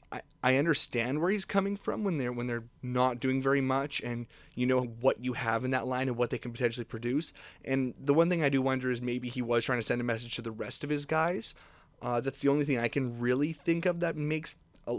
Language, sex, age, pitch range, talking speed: English, male, 20-39, 120-145 Hz, 255 wpm